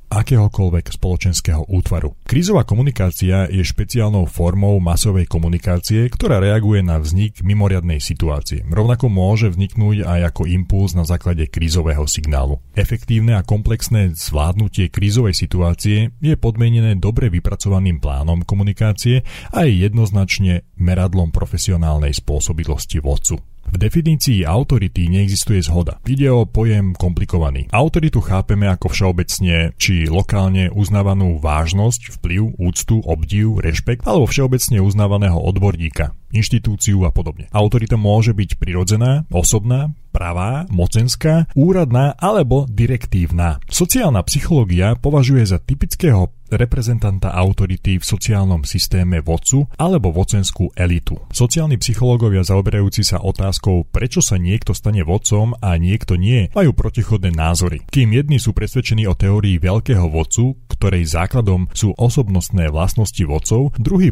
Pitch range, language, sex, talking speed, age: 90-115 Hz, Slovak, male, 120 wpm, 40-59